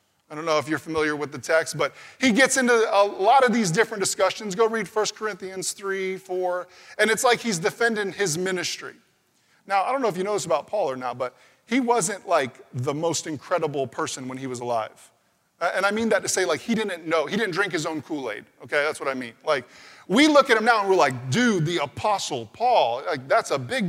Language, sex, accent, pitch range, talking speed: English, male, American, 175-230 Hz, 235 wpm